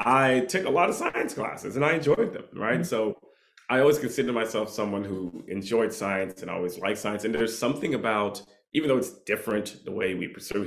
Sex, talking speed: male, 210 wpm